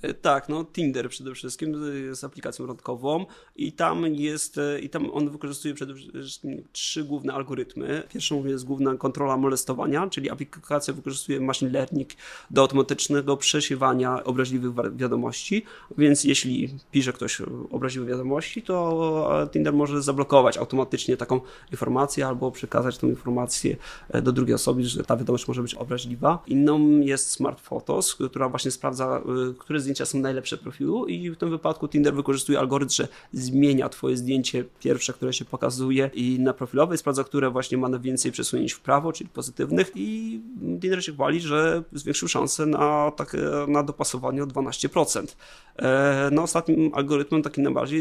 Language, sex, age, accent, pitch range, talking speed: Polish, male, 30-49, native, 130-145 Hz, 150 wpm